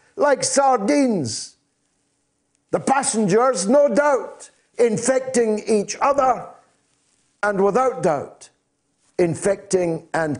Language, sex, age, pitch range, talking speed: English, male, 50-69, 170-260 Hz, 80 wpm